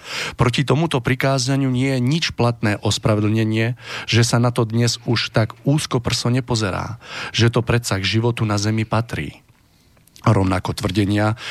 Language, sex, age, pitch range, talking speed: Slovak, male, 40-59, 100-120 Hz, 140 wpm